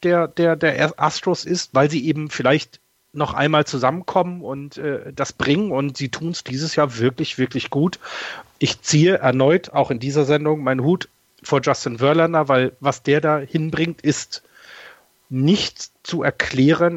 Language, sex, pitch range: German, male, 130-155 Hz